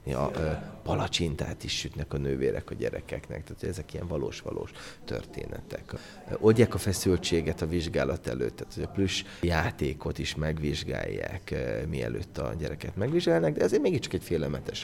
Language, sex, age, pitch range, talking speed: Hungarian, male, 30-49, 80-95 Hz, 145 wpm